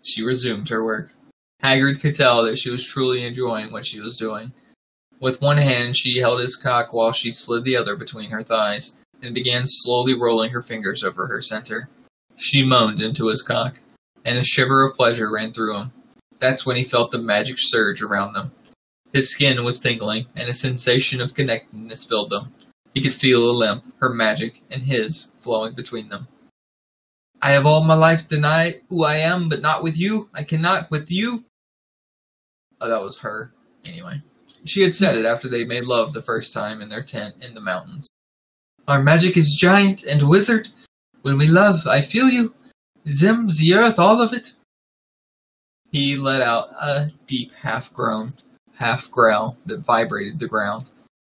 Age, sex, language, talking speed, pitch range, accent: 20-39, male, English, 180 wpm, 120-155 Hz, American